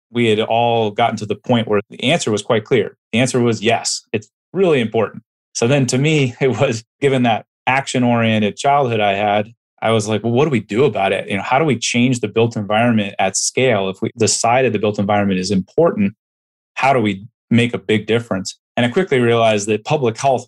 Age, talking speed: 30-49, 220 wpm